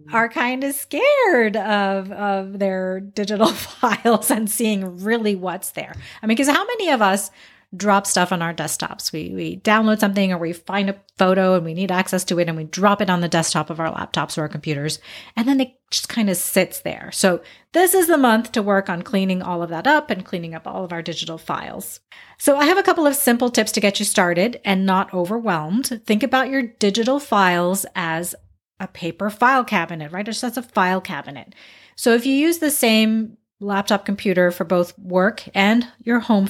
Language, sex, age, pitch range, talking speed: English, female, 30-49, 180-240 Hz, 210 wpm